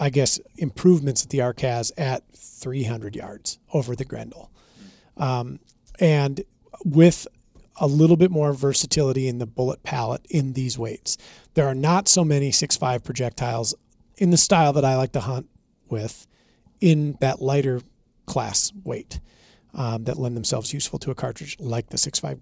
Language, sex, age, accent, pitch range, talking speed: English, male, 40-59, American, 120-155 Hz, 160 wpm